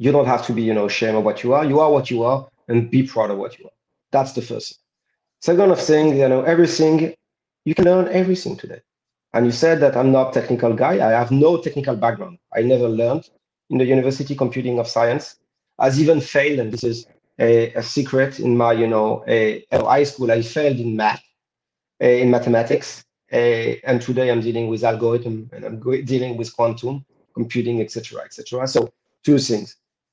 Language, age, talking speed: Turkish, 40-59, 205 wpm